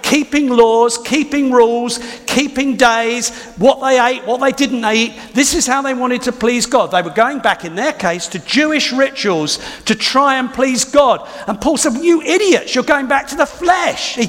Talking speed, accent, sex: 200 wpm, British, male